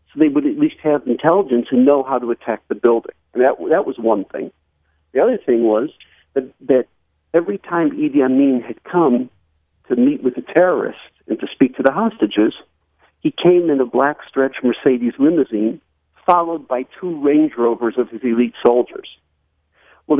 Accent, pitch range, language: American, 120-185 Hz, English